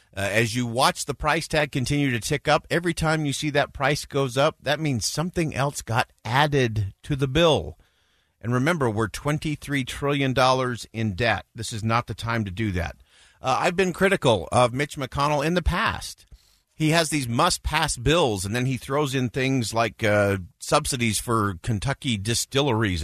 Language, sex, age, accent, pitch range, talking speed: English, male, 50-69, American, 105-140 Hz, 180 wpm